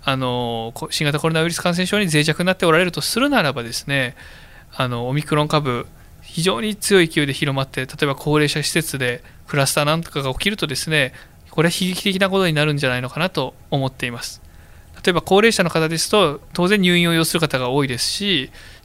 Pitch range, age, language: 130-180 Hz, 20-39, Japanese